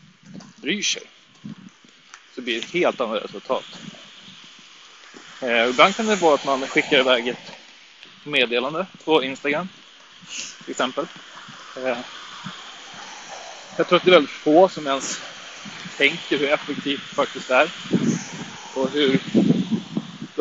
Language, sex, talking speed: Swedish, male, 125 wpm